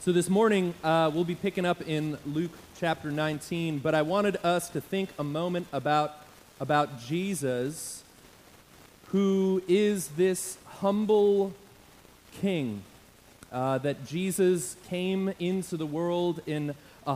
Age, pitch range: 30-49, 150-180 Hz